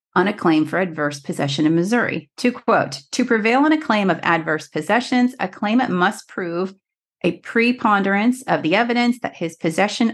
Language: English